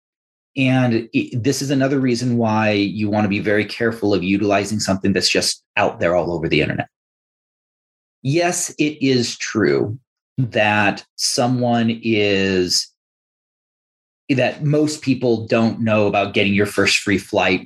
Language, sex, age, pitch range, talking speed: English, male, 30-49, 105-135 Hz, 145 wpm